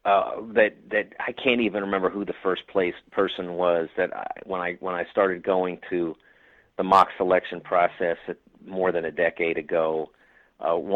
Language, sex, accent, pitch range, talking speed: English, male, American, 95-135 Hz, 175 wpm